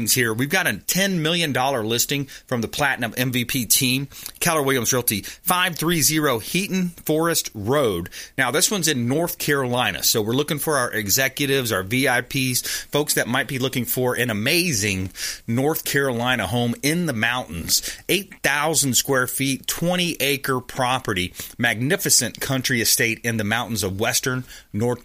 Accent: American